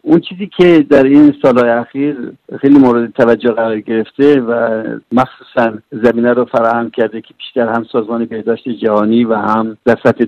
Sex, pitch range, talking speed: male, 115-150 Hz, 165 wpm